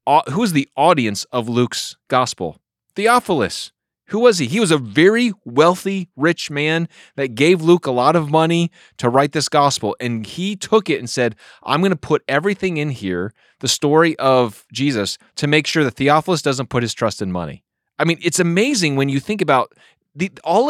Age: 30-49